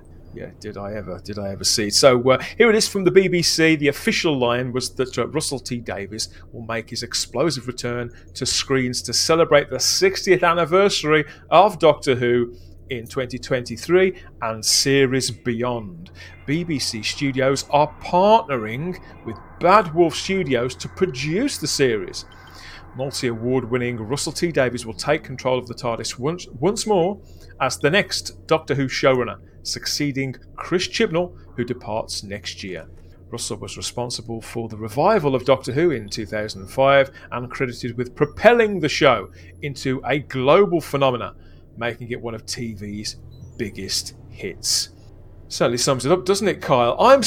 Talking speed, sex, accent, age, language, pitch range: 150 wpm, male, British, 30-49, English, 110-165 Hz